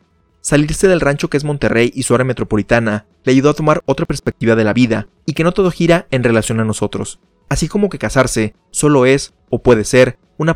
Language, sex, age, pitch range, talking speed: Spanish, male, 30-49, 115-145 Hz, 215 wpm